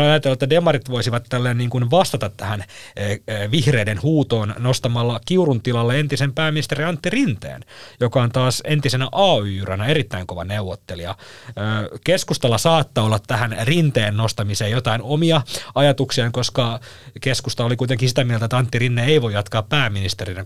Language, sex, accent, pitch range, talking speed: Finnish, male, native, 105-140 Hz, 140 wpm